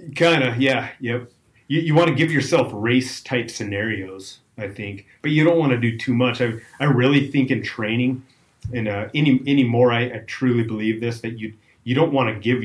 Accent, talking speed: American, 220 wpm